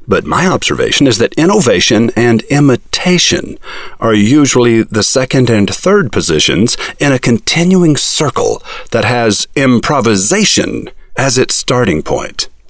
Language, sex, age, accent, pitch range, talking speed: English, male, 50-69, American, 120-180 Hz, 125 wpm